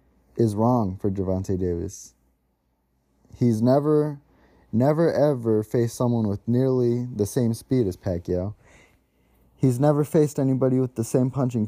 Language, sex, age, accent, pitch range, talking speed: English, male, 20-39, American, 95-120 Hz, 135 wpm